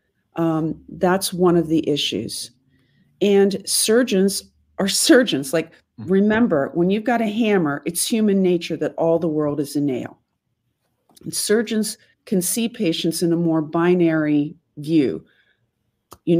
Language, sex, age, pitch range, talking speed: English, female, 50-69, 160-210 Hz, 135 wpm